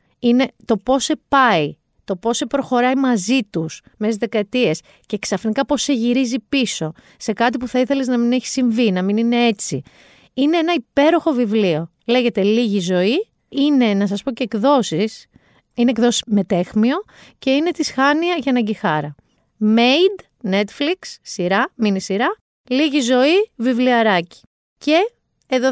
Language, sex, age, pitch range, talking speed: Greek, female, 30-49, 205-275 Hz, 155 wpm